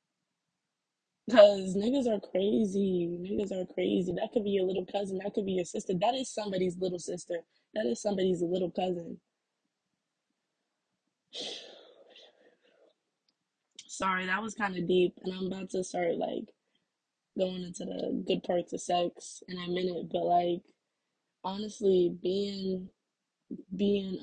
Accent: American